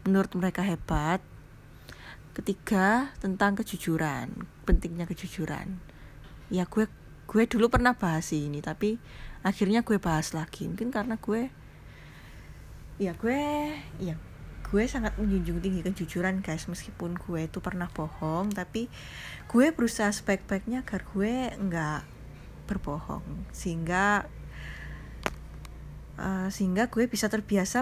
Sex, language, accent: female, Indonesian, native